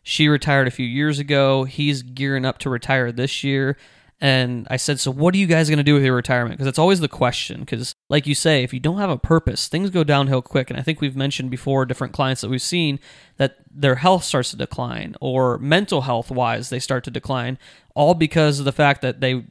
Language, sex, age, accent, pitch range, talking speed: English, male, 20-39, American, 135-170 Hz, 240 wpm